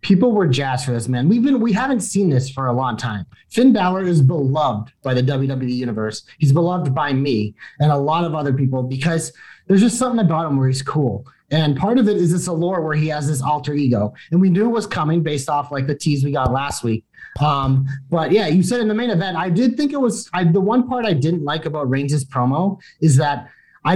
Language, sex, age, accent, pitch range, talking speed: English, male, 30-49, American, 135-185 Hz, 245 wpm